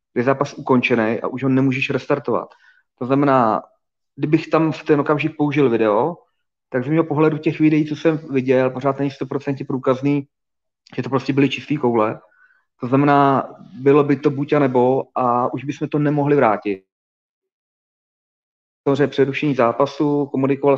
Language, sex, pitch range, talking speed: Czech, male, 130-145 Hz, 155 wpm